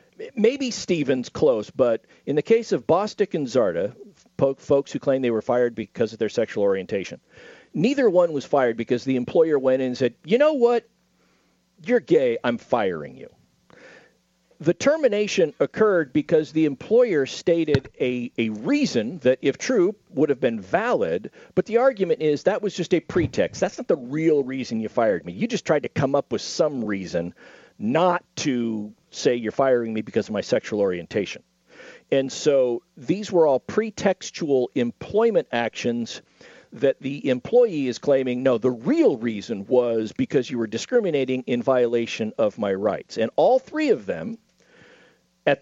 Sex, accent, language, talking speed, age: male, American, English, 170 wpm, 50-69